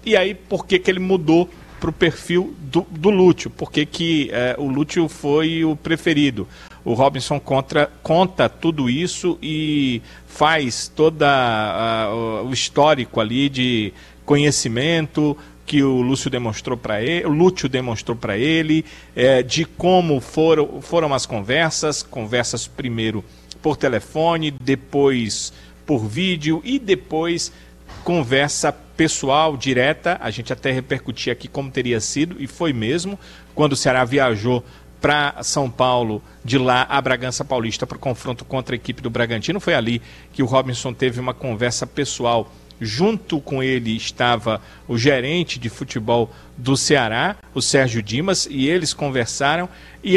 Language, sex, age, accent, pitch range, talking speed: Portuguese, male, 40-59, Brazilian, 125-160 Hz, 145 wpm